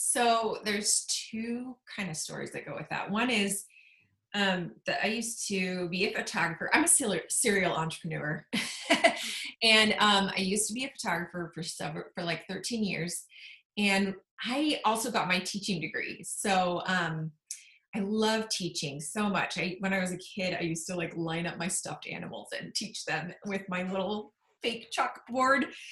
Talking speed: 175 wpm